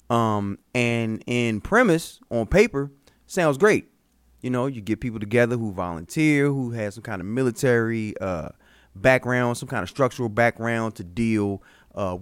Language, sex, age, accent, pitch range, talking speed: English, male, 30-49, American, 100-125 Hz, 155 wpm